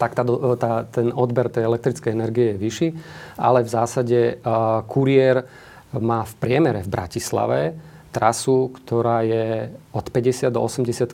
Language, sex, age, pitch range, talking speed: Slovak, male, 40-59, 110-125 Hz, 145 wpm